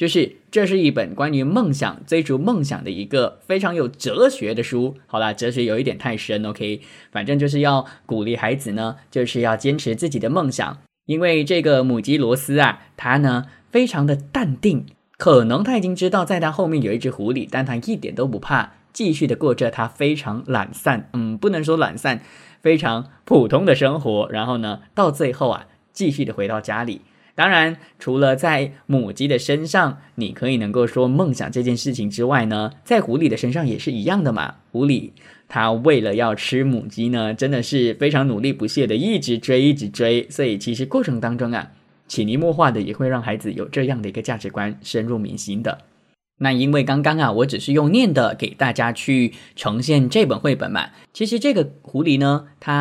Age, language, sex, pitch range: 10-29, English, male, 115-145 Hz